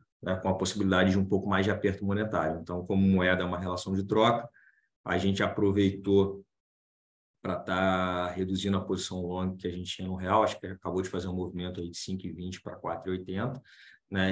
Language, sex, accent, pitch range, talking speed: Portuguese, male, Brazilian, 90-100 Hz, 195 wpm